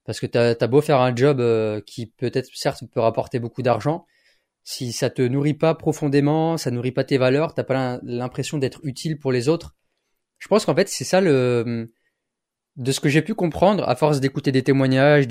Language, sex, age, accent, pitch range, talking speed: French, male, 20-39, French, 130-165 Hz, 205 wpm